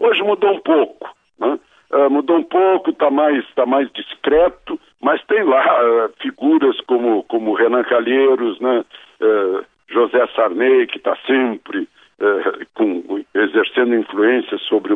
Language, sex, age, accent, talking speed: Portuguese, male, 60-79, Brazilian, 115 wpm